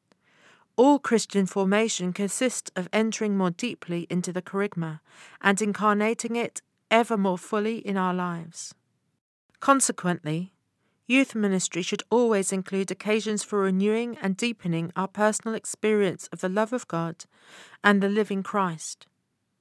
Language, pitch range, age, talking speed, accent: English, 185-225 Hz, 40-59, 130 wpm, British